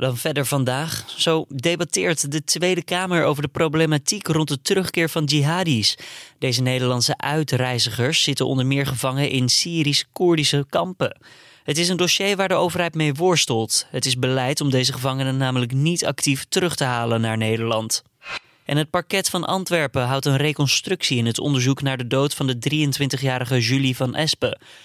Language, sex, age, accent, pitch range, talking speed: Dutch, male, 20-39, Dutch, 130-160 Hz, 165 wpm